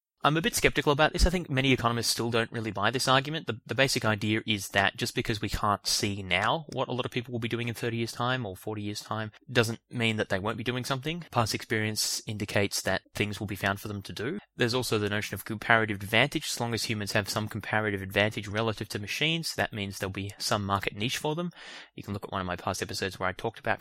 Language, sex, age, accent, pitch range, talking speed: English, male, 20-39, Australian, 105-125 Hz, 260 wpm